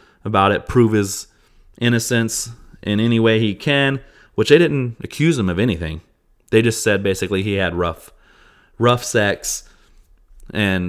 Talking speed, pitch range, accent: 150 wpm, 95-115 Hz, American